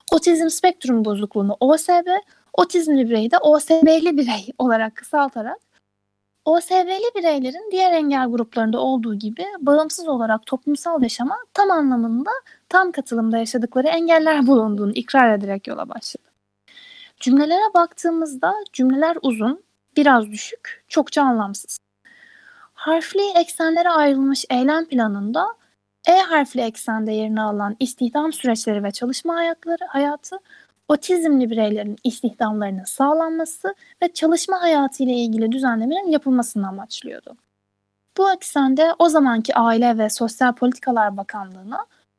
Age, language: 10-29, Turkish